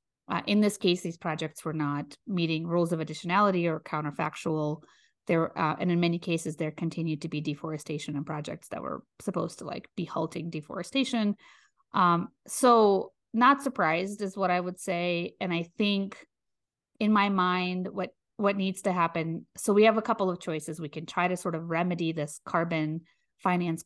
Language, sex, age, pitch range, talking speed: English, female, 30-49, 165-205 Hz, 180 wpm